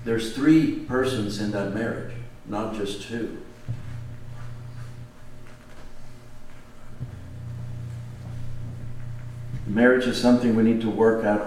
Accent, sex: American, male